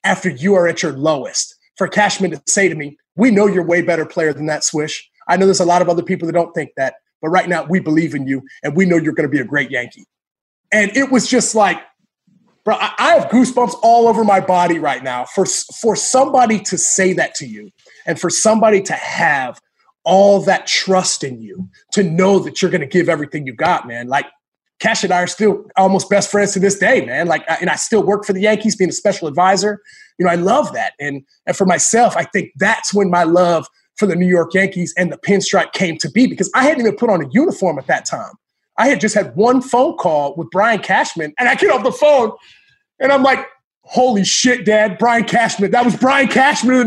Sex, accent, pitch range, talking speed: male, American, 175-235 Hz, 240 wpm